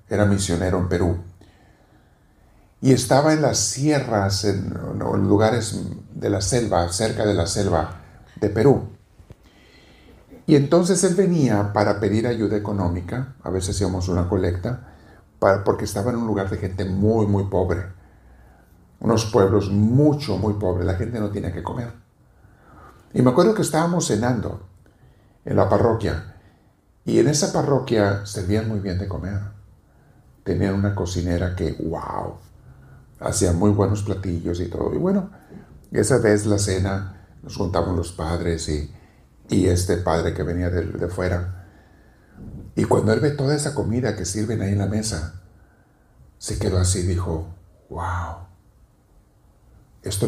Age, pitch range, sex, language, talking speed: 50-69, 90-110 Hz, male, Spanish, 145 wpm